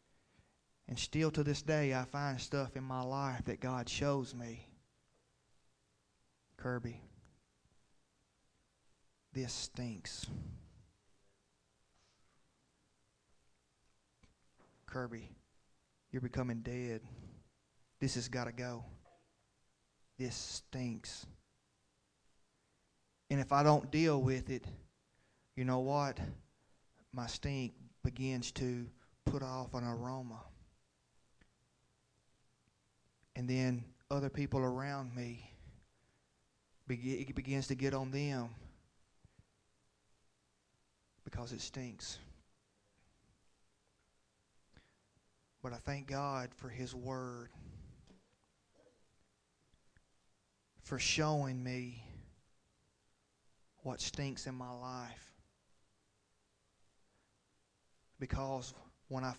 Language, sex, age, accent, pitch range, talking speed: English, male, 30-49, American, 100-135 Hz, 80 wpm